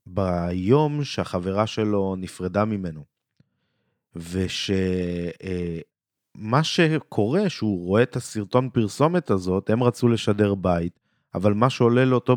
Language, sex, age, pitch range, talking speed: Hebrew, male, 30-49, 100-135 Hz, 100 wpm